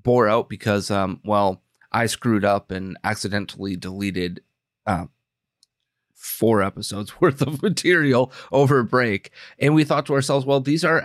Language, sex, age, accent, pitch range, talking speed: English, male, 30-49, American, 110-145 Hz, 150 wpm